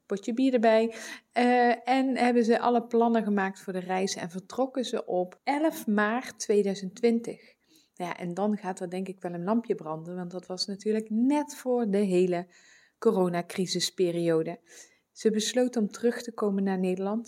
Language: English